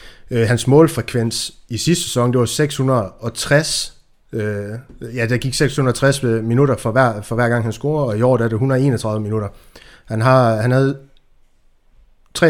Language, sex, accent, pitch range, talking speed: Danish, male, native, 115-140 Hz, 165 wpm